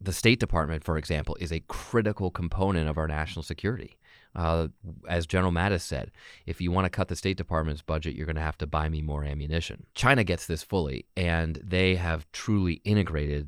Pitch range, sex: 75-95 Hz, male